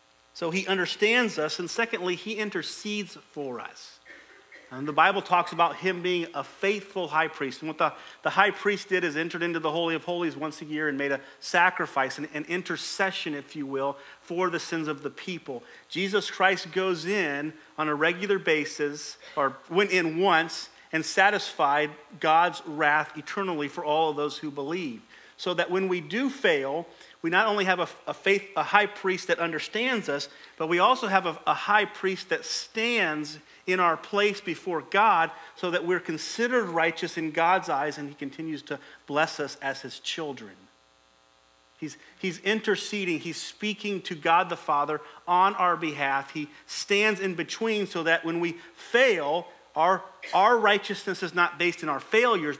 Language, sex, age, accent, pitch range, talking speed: English, male, 40-59, American, 150-190 Hz, 180 wpm